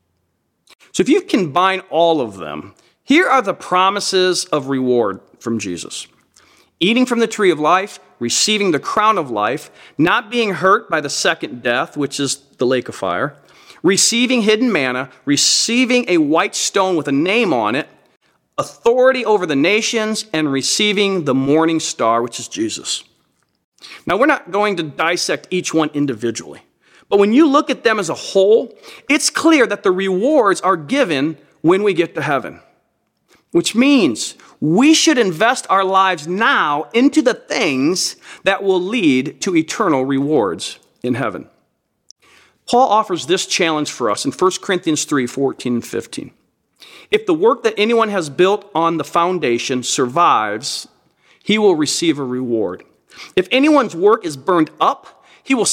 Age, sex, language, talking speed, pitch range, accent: 40-59, male, English, 160 wpm, 150-235 Hz, American